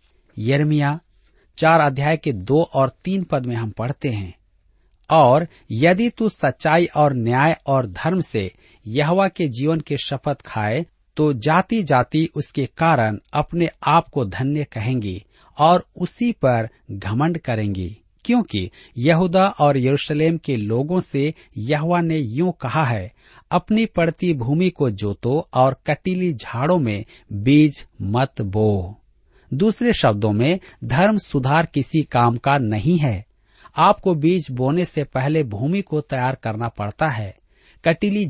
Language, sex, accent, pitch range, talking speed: Hindi, male, native, 115-165 Hz, 135 wpm